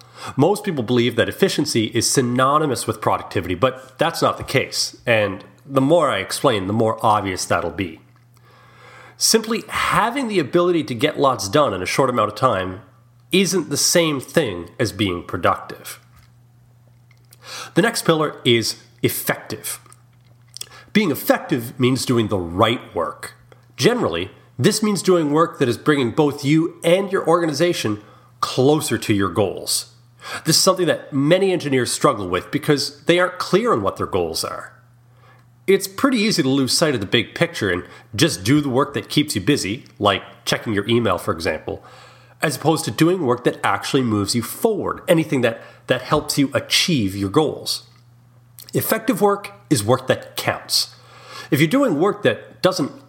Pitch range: 120-160 Hz